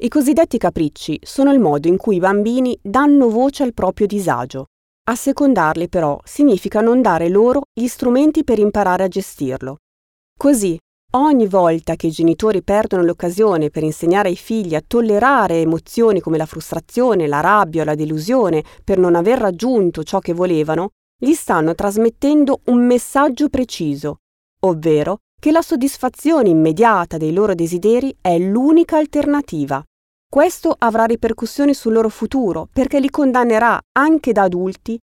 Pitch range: 160-250 Hz